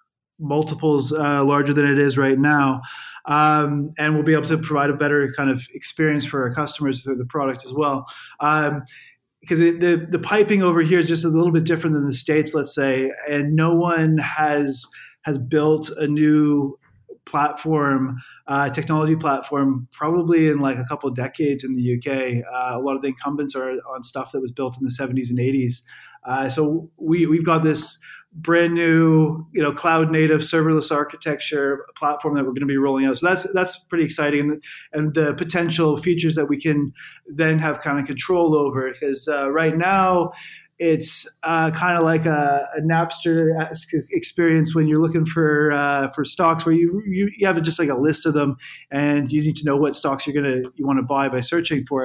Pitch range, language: 140-160 Hz, English